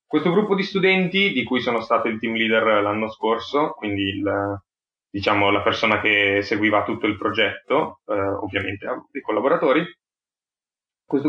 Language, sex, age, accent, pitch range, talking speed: Italian, male, 20-39, native, 110-145 Hz, 150 wpm